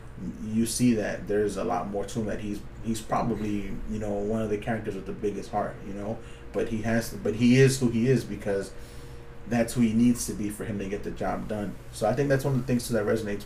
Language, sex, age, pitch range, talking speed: English, male, 20-39, 100-115 Hz, 270 wpm